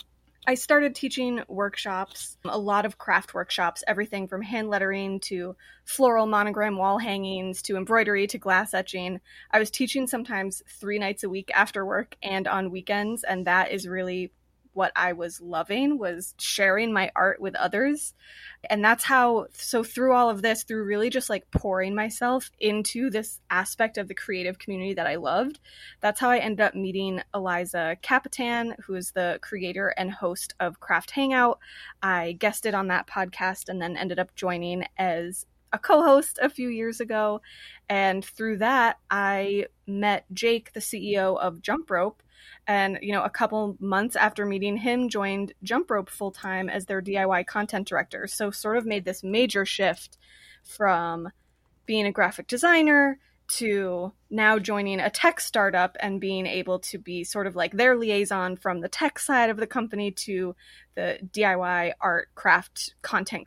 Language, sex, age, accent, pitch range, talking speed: English, female, 20-39, American, 190-225 Hz, 170 wpm